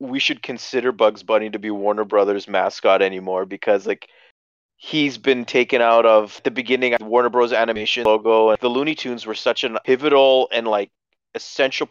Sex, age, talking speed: male, 30-49, 180 wpm